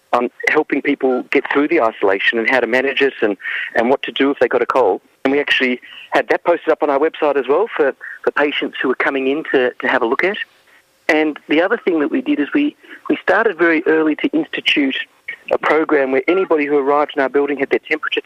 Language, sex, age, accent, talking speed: English, male, 40-59, Australian, 245 wpm